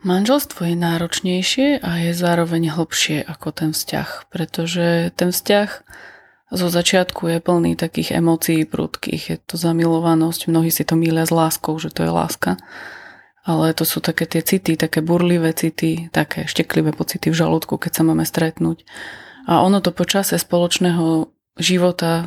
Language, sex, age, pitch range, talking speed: Slovak, female, 20-39, 160-175 Hz, 155 wpm